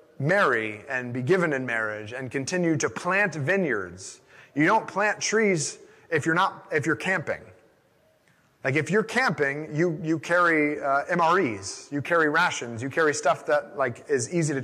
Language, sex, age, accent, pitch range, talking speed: English, male, 30-49, American, 135-175 Hz, 170 wpm